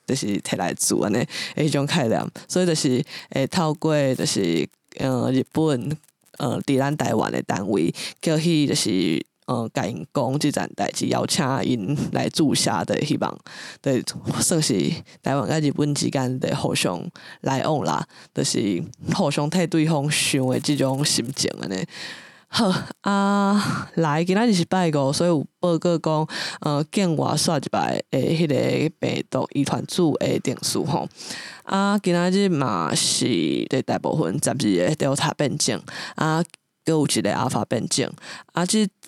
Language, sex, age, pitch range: English, female, 20-39, 140-175 Hz